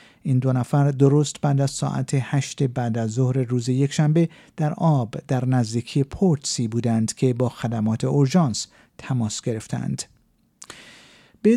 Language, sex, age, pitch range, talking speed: Persian, male, 50-69, 135-180 Hz, 135 wpm